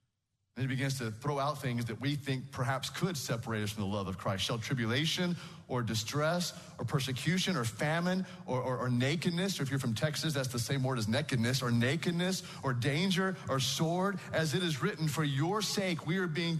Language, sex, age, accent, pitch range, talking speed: English, male, 40-59, American, 120-155 Hz, 210 wpm